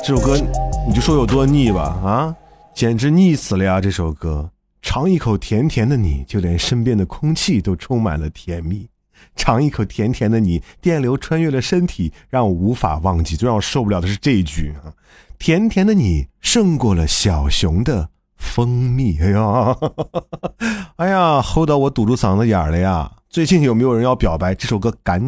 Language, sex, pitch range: Chinese, male, 95-150 Hz